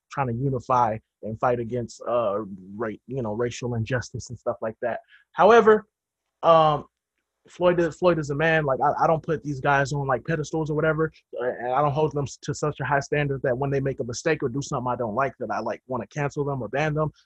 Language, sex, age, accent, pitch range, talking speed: English, male, 20-39, American, 125-165 Hz, 235 wpm